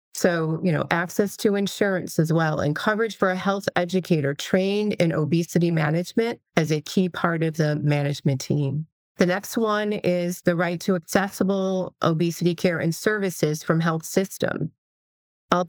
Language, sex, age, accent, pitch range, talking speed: English, female, 30-49, American, 160-185 Hz, 160 wpm